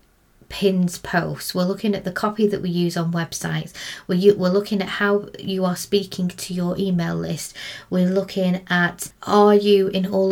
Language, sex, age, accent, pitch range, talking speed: English, female, 30-49, British, 175-210 Hz, 180 wpm